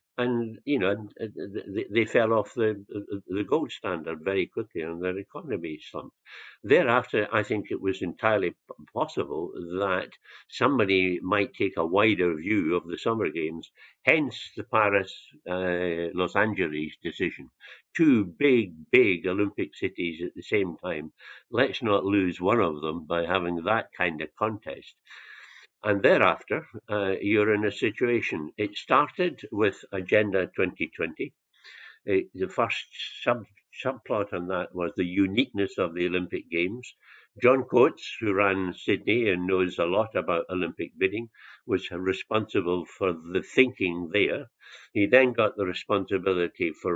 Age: 60-79